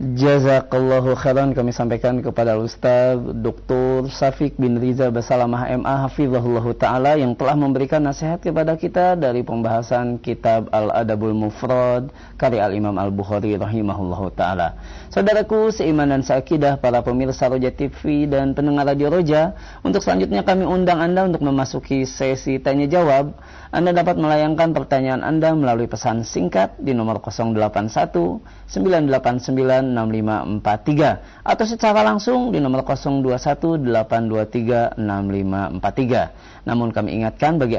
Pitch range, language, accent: 120-150 Hz, Indonesian, native